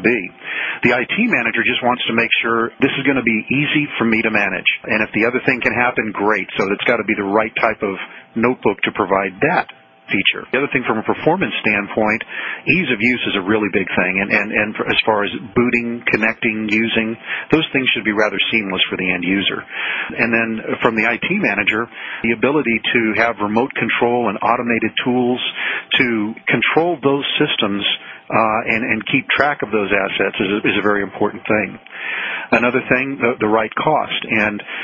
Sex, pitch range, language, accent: male, 105-120 Hz, English, American